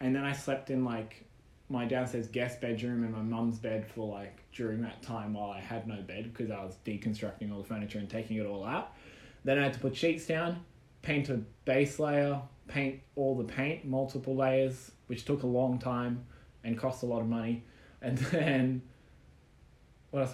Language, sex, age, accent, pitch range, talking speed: English, male, 20-39, Australian, 110-130 Hz, 200 wpm